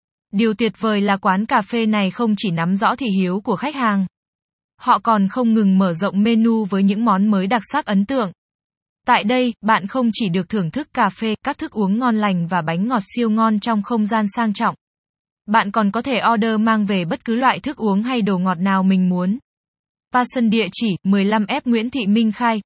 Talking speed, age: 220 wpm, 20-39